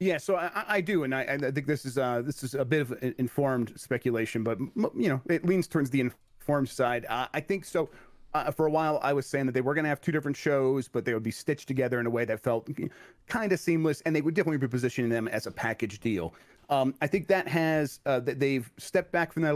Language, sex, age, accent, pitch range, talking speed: English, male, 30-49, American, 120-155 Hz, 265 wpm